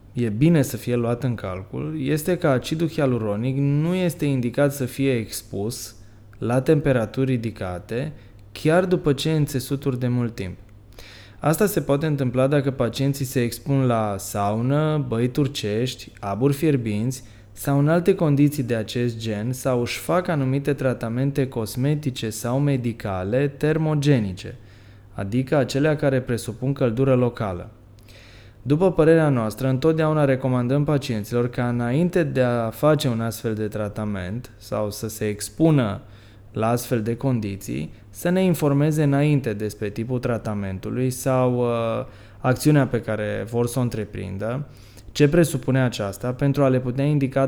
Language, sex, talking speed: Romanian, male, 140 wpm